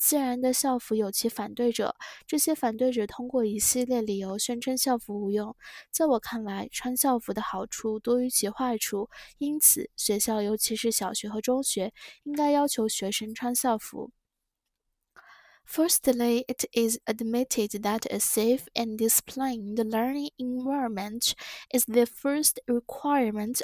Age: 10-29